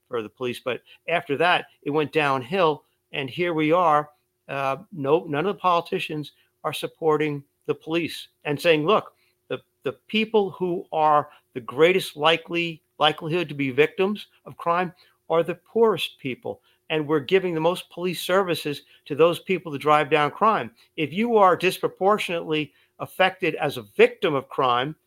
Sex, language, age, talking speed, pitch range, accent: male, English, 50-69, 165 wpm, 130-170 Hz, American